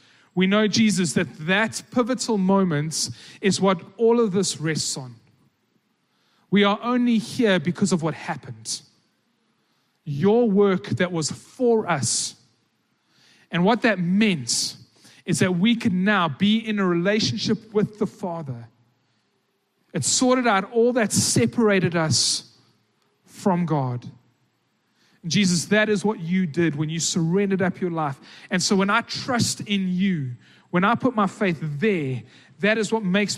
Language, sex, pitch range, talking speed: English, male, 150-200 Hz, 145 wpm